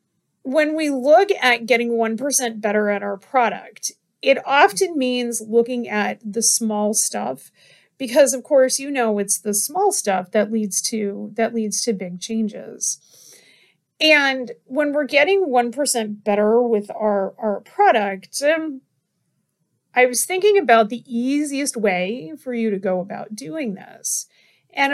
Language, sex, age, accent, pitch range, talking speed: English, female, 30-49, American, 215-295 Hz, 145 wpm